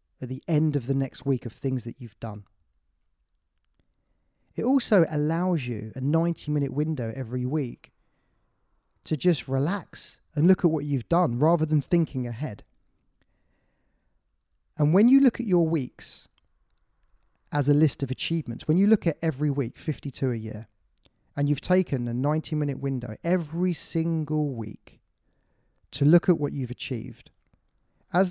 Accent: British